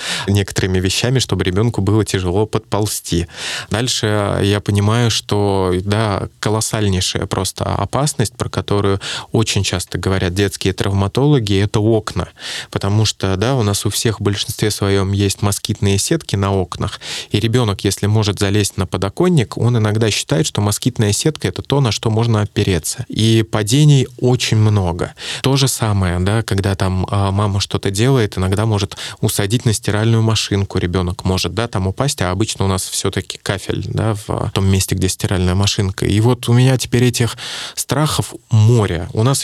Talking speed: 160 wpm